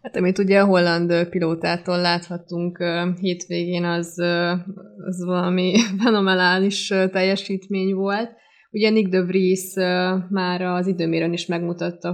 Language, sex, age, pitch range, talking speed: Hungarian, female, 20-39, 170-195 Hz, 115 wpm